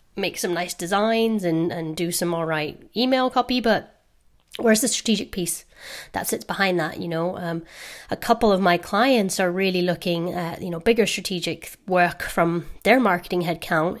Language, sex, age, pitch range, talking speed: English, female, 30-49, 160-195 Hz, 180 wpm